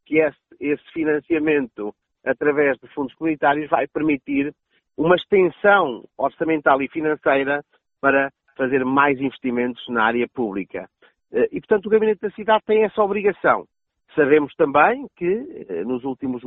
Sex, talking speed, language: male, 130 wpm, Portuguese